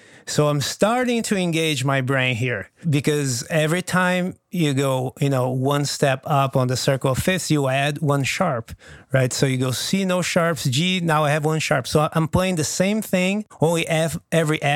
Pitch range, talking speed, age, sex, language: 130-155 Hz, 200 wpm, 30-49, male, English